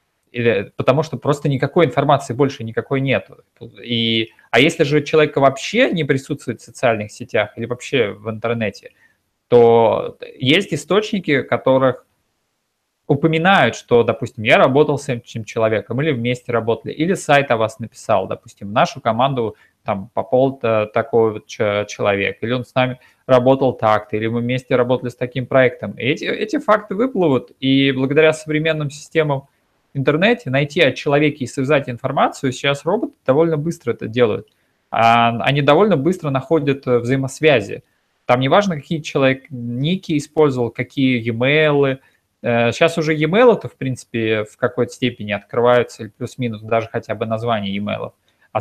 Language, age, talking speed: Russian, 20-39, 145 wpm